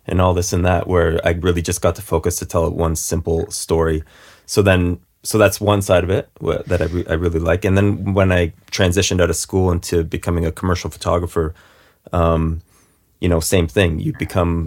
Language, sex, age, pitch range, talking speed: English, male, 20-39, 80-95 Hz, 205 wpm